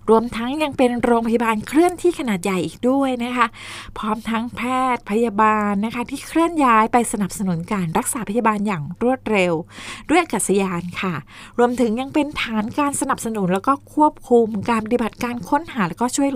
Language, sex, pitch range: Thai, female, 195-245 Hz